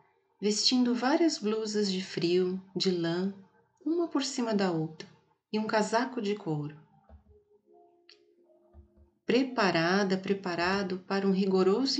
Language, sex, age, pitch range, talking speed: Portuguese, female, 40-59, 185-265 Hz, 110 wpm